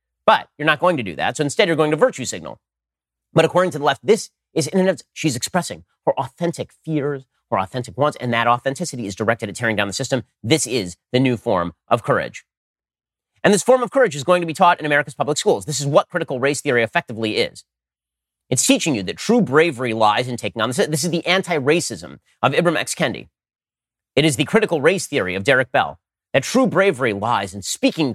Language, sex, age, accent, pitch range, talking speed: English, male, 30-49, American, 120-170 Hz, 220 wpm